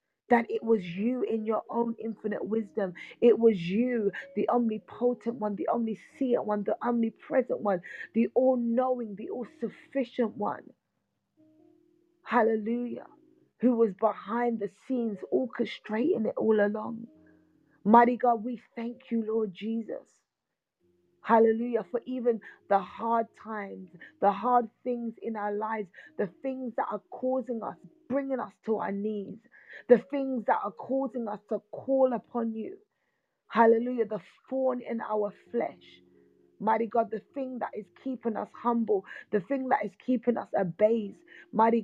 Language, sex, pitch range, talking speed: English, female, 210-245 Hz, 140 wpm